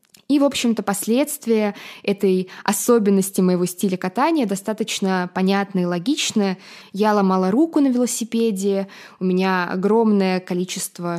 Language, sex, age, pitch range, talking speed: Russian, female, 20-39, 180-225 Hz, 120 wpm